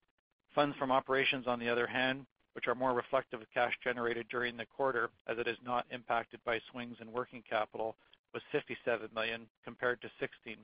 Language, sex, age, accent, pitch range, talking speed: English, male, 50-69, American, 115-130 Hz, 185 wpm